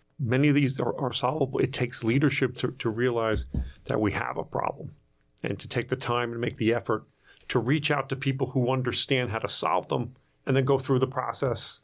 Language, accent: English, American